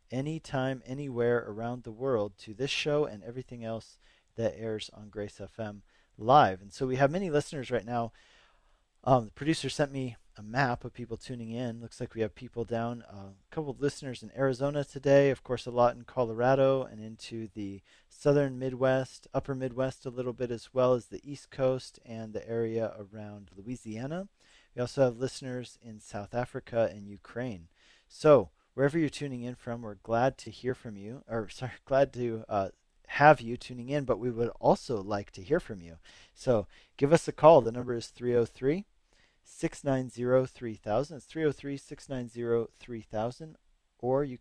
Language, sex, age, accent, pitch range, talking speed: English, male, 40-59, American, 110-135 Hz, 175 wpm